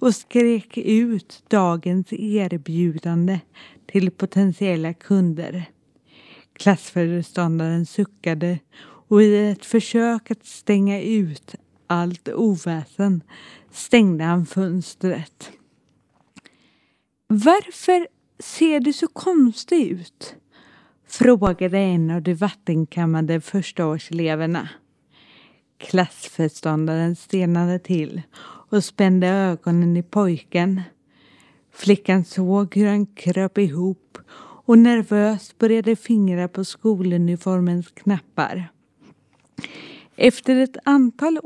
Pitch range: 175-225 Hz